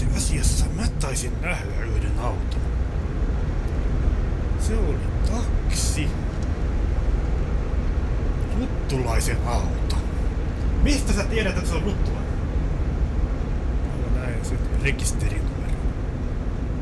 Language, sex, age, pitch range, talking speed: Finnish, male, 30-49, 75-95 Hz, 80 wpm